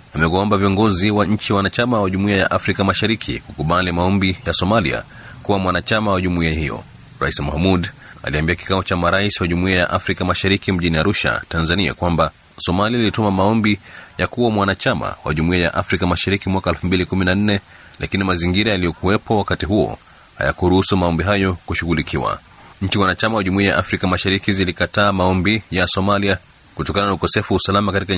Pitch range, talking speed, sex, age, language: 85-100 Hz, 155 wpm, male, 30-49, Swahili